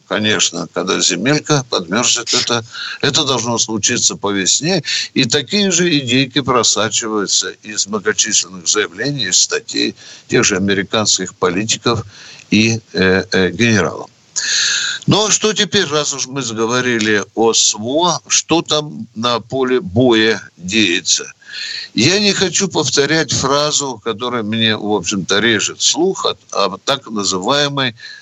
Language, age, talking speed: Russian, 60-79, 125 wpm